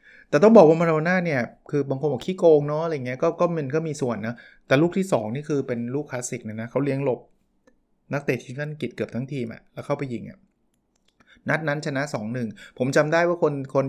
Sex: male